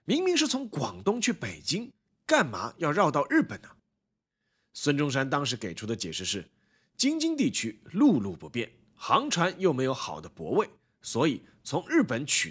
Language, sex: Chinese, male